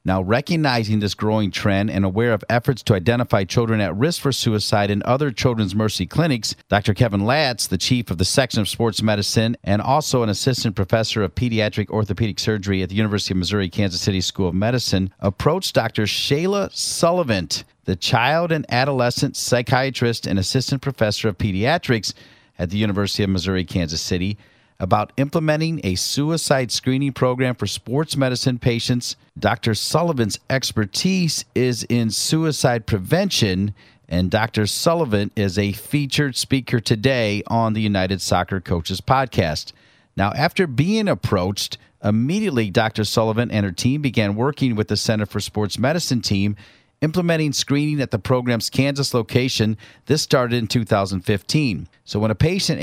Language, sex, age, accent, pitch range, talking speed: English, male, 50-69, American, 105-135 Hz, 155 wpm